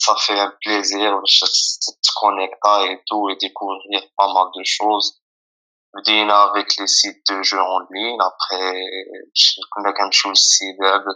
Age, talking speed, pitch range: 20-39, 165 wpm, 100-120 Hz